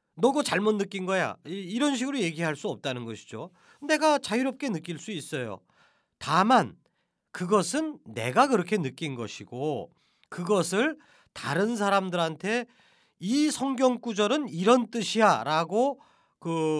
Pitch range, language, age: 150-230 Hz, Korean, 40-59